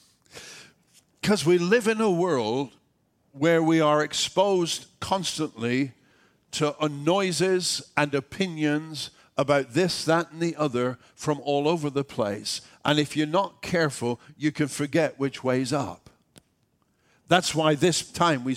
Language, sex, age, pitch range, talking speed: English, male, 50-69, 130-165 Hz, 135 wpm